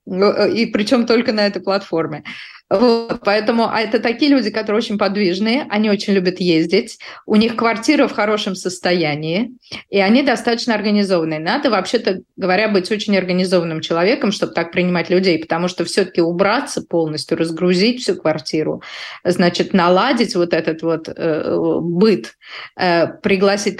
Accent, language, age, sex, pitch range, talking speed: native, Russian, 20-39, female, 180-235 Hz, 145 wpm